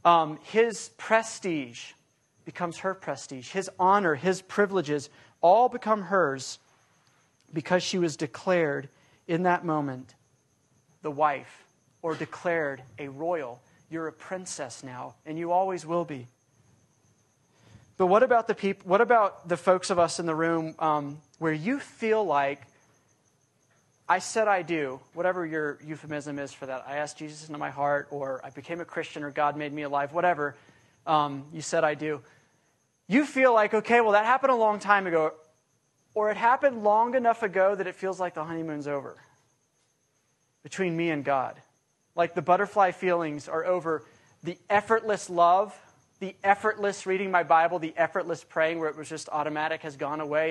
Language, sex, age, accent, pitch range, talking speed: English, male, 30-49, American, 145-185 Hz, 165 wpm